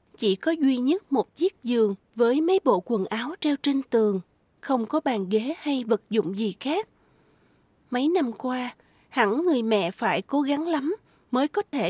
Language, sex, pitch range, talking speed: Vietnamese, female, 215-295 Hz, 185 wpm